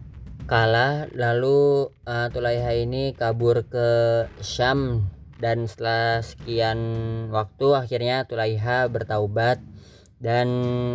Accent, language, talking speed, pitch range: native, Indonesian, 90 wpm, 110-120 Hz